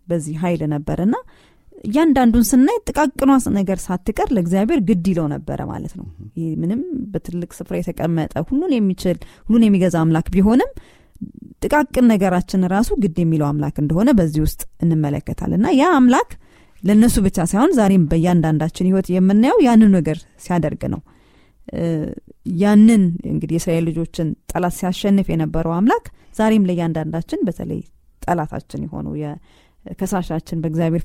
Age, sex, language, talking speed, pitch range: 30-49, female, Amharic, 55 wpm, 165-220 Hz